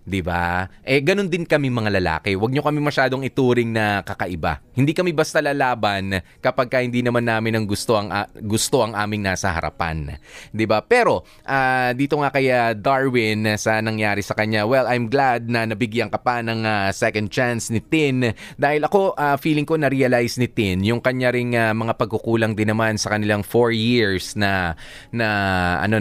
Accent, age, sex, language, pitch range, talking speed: Filipino, 20-39, male, English, 105-135 Hz, 180 wpm